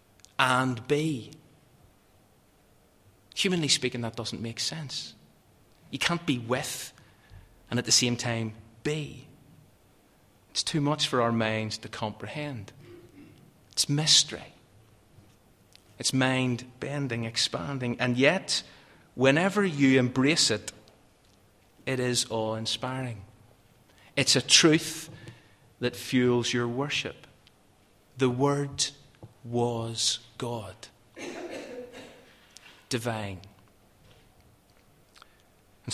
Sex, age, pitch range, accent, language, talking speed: male, 30-49, 110-135 Hz, British, English, 90 wpm